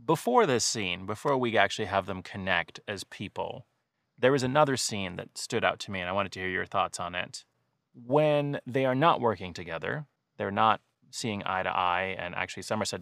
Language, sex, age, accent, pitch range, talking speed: English, male, 30-49, American, 100-140 Hz, 205 wpm